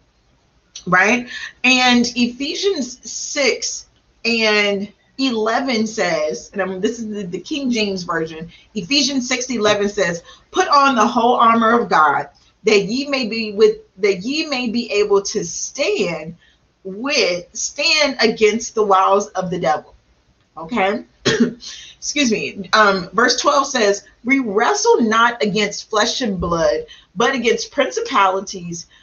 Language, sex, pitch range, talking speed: English, female, 190-245 Hz, 135 wpm